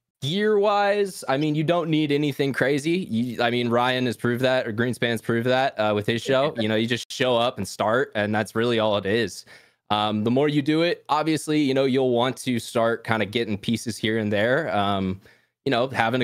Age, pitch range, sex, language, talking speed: 20-39, 105-125 Hz, male, English, 225 wpm